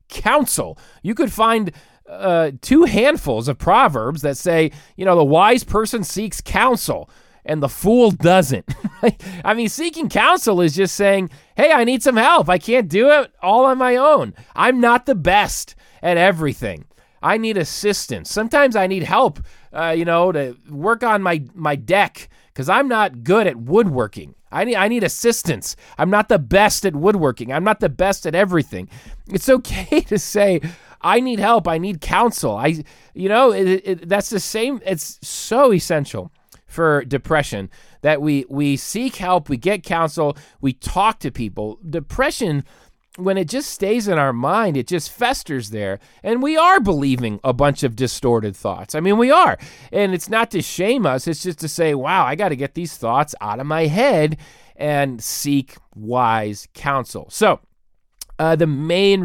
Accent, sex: American, male